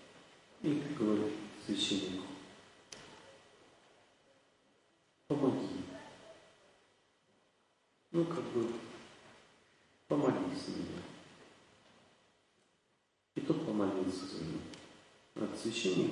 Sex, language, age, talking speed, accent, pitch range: male, Russian, 40-59, 55 wpm, native, 110-145 Hz